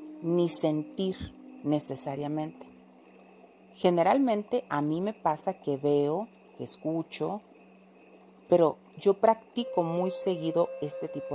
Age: 40-59